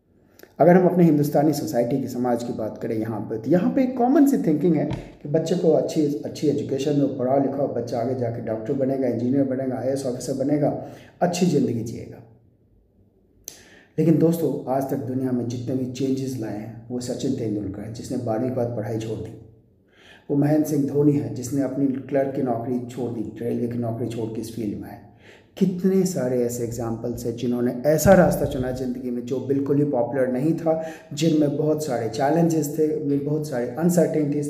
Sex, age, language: male, 30-49, Hindi